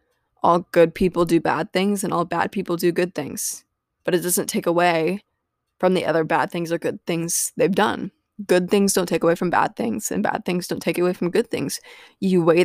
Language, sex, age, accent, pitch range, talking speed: English, female, 20-39, American, 170-195 Hz, 225 wpm